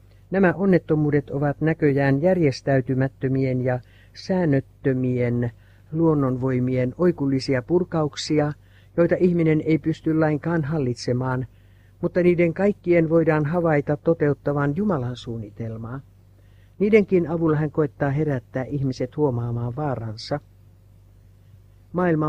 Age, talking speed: 60-79, 90 wpm